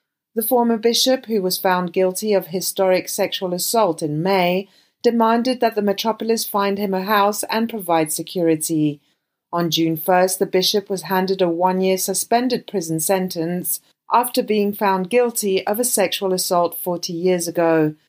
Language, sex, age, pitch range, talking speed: English, female, 30-49, 175-215 Hz, 155 wpm